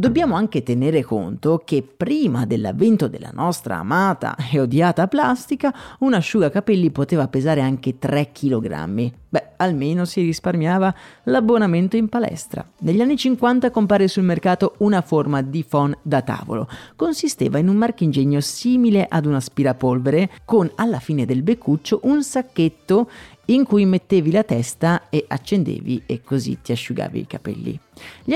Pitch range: 145-205 Hz